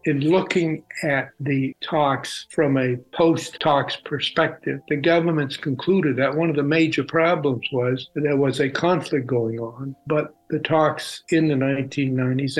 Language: English